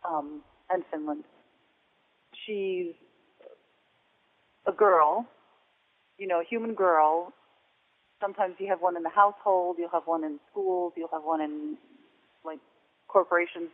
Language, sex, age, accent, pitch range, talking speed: English, female, 40-59, American, 155-185 Hz, 125 wpm